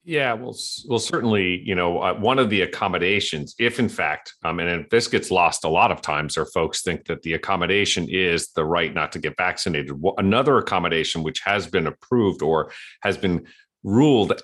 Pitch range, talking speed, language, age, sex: 75-90 Hz, 190 wpm, English, 40-59, male